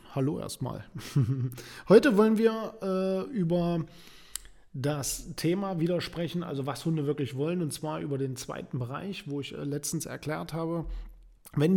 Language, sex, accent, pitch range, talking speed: German, male, German, 135-170 Hz, 145 wpm